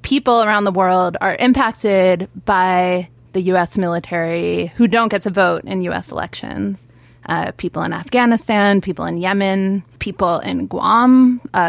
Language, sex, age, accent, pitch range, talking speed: English, female, 20-39, American, 175-210 Hz, 150 wpm